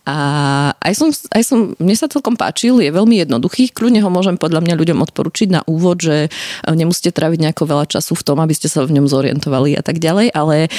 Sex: female